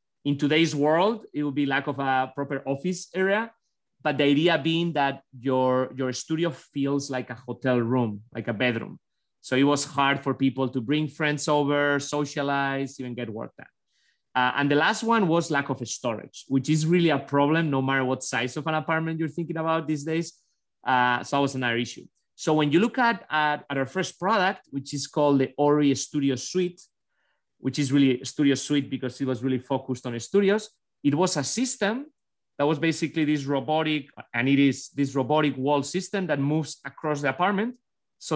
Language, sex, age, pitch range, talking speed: English, male, 30-49, 135-160 Hz, 195 wpm